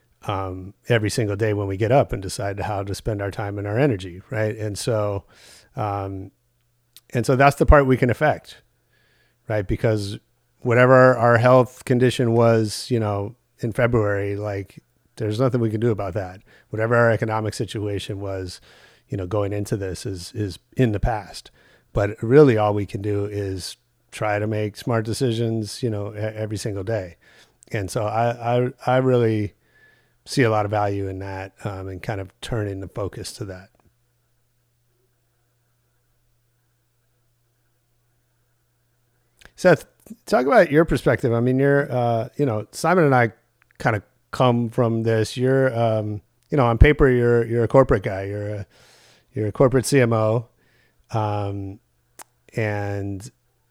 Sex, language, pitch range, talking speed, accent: male, English, 105-120 Hz, 160 wpm, American